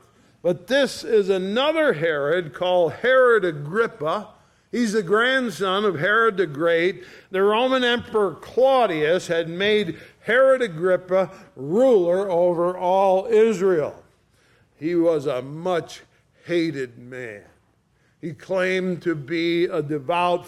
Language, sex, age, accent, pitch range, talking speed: English, male, 50-69, American, 170-215 Hz, 115 wpm